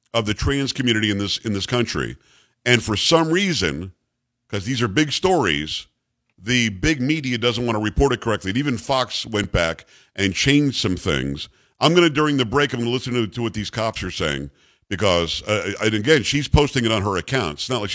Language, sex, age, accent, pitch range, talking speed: English, male, 50-69, American, 110-140 Hz, 210 wpm